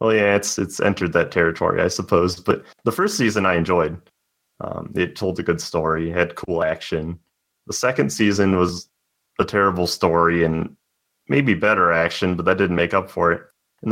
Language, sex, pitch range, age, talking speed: English, male, 85-105 Hz, 30-49, 185 wpm